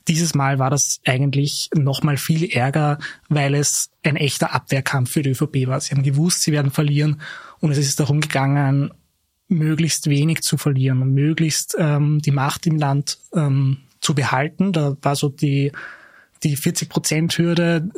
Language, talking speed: German, 165 wpm